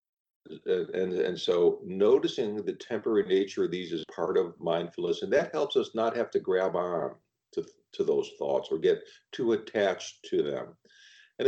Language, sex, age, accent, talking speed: English, male, 50-69, American, 180 wpm